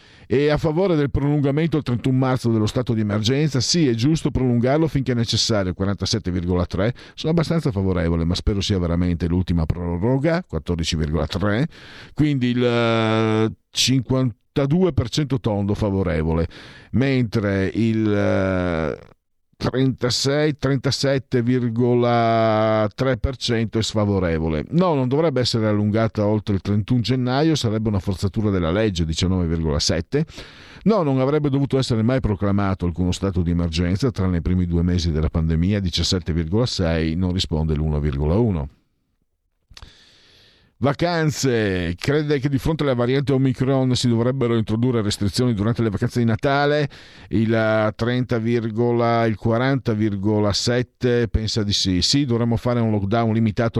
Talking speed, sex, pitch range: 115 wpm, male, 95-130 Hz